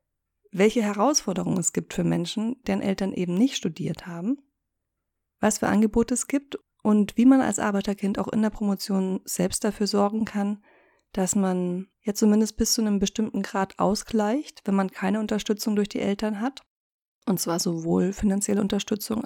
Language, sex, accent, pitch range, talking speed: German, female, German, 195-230 Hz, 165 wpm